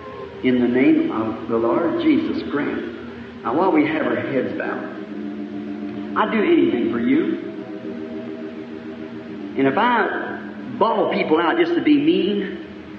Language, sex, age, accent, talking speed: English, male, 50-69, American, 140 wpm